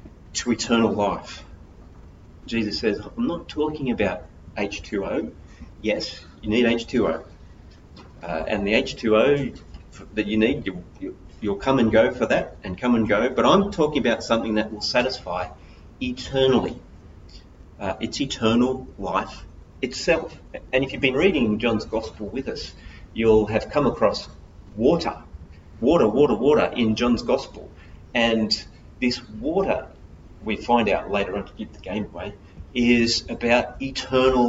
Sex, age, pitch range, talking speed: male, 30-49, 90-120 Hz, 145 wpm